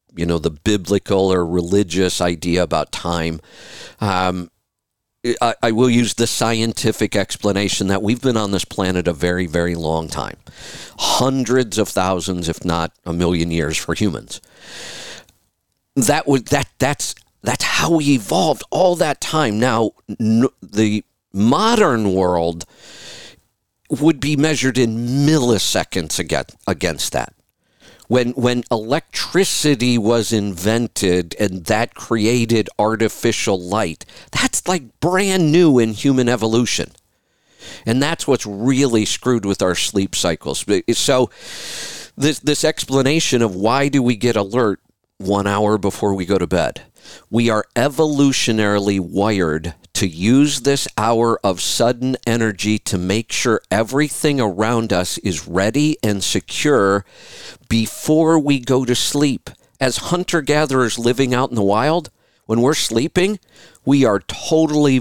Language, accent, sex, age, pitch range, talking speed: English, American, male, 50-69, 95-135 Hz, 135 wpm